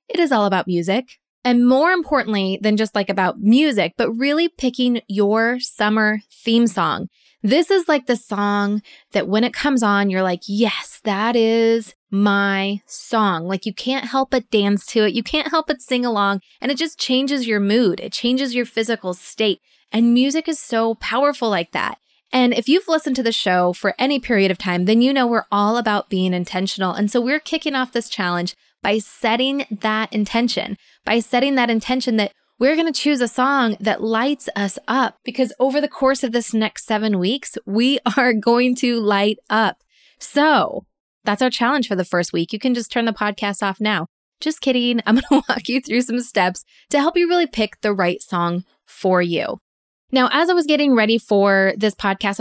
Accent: American